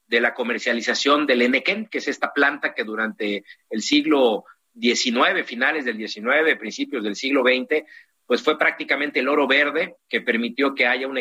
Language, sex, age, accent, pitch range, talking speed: Spanish, male, 50-69, Mexican, 120-155 Hz, 170 wpm